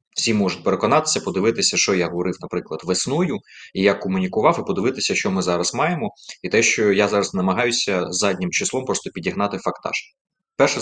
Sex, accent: male, native